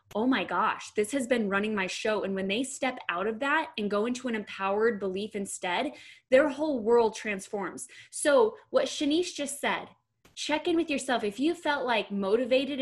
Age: 10-29